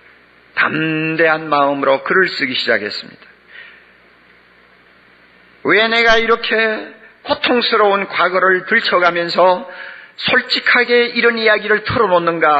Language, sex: Korean, male